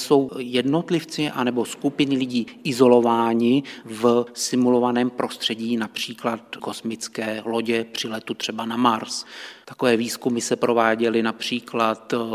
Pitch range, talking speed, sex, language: 115-125 Hz, 105 wpm, male, Czech